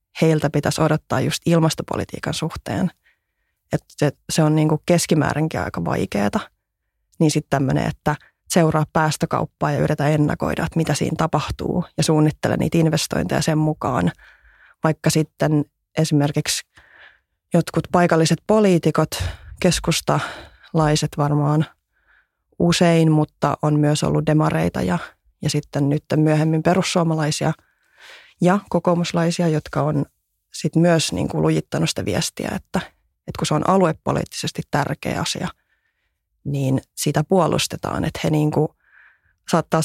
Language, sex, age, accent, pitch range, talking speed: Finnish, female, 20-39, native, 150-165 Hz, 120 wpm